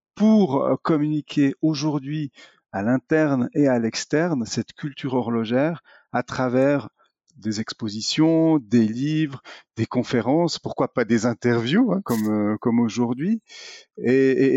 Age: 40-59